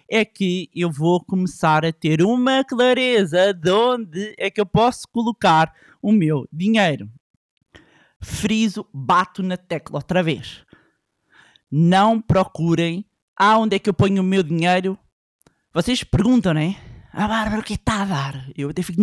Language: Portuguese